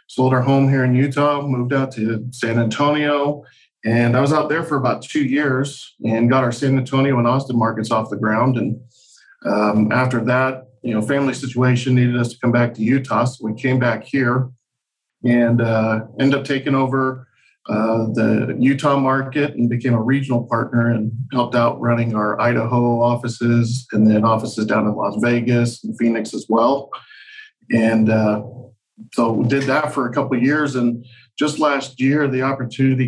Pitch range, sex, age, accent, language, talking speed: 115-135 Hz, male, 40-59, American, English, 185 wpm